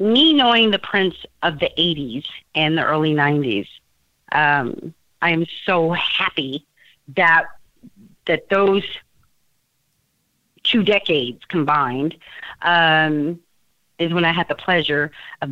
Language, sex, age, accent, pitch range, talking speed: English, female, 40-59, American, 155-190 Hz, 115 wpm